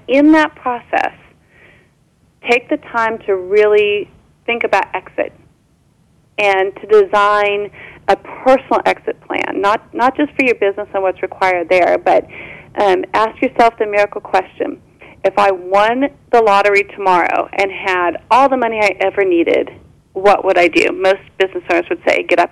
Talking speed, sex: 160 wpm, female